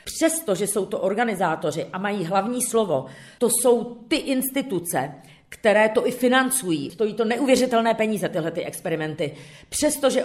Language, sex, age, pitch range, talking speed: Czech, female, 40-59, 180-235 Hz, 140 wpm